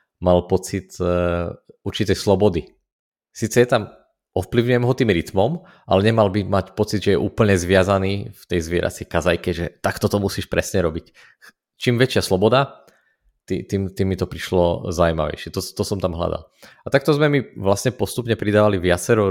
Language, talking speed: Czech, 165 wpm